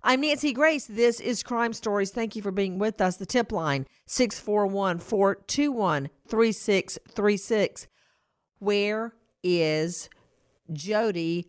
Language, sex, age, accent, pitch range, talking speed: English, female, 50-69, American, 165-215 Hz, 105 wpm